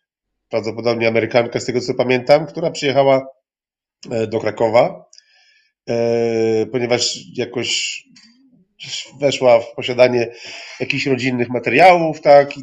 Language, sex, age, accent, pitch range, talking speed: Polish, male, 40-59, native, 115-140 Hz, 95 wpm